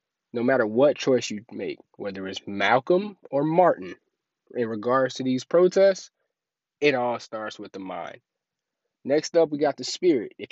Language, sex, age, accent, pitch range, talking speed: English, male, 20-39, American, 110-150 Hz, 165 wpm